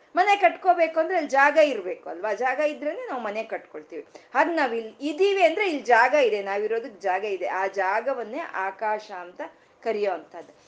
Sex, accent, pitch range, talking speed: female, native, 195-295 Hz, 150 wpm